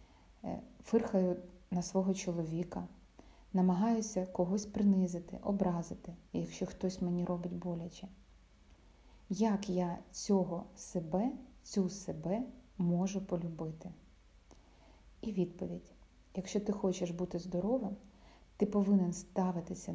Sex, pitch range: female, 175-205 Hz